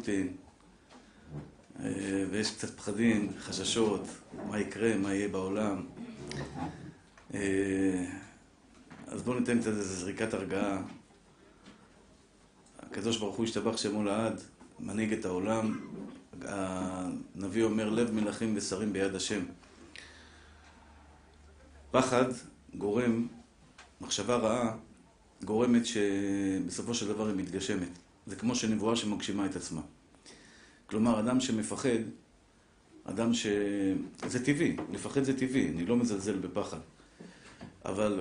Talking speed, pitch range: 95 wpm, 100-120 Hz